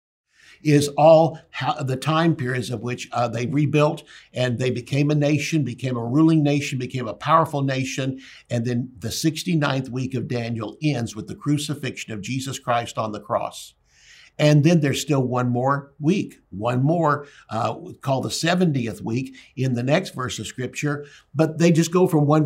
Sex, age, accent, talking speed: male, 60-79, American, 175 wpm